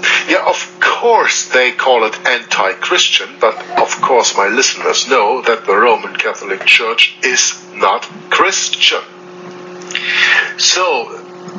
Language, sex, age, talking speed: English, male, 60-79, 115 wpm